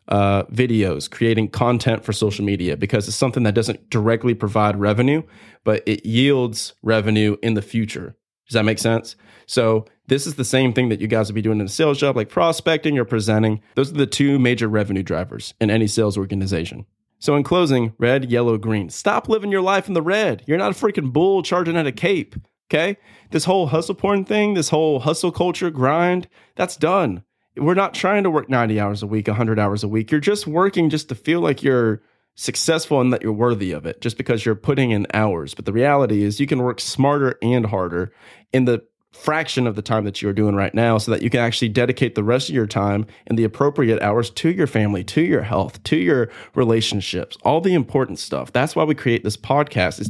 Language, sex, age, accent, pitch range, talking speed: English, male, 20-39, American, 110-145 Hz, 220 wpm